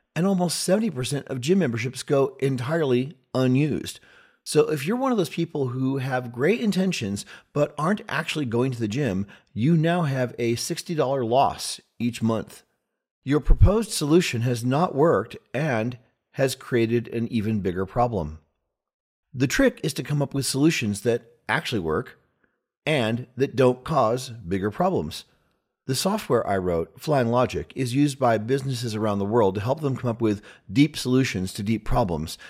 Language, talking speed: English, 165 wpm